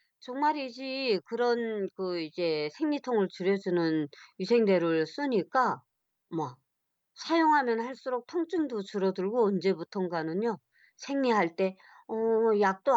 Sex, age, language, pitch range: male, 50-69, Korean, 185-250 Hz